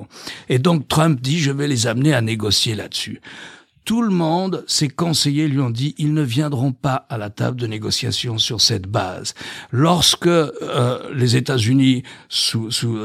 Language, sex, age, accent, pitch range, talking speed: French, male, 60-79, French, 120-160 Hz, 190 wpm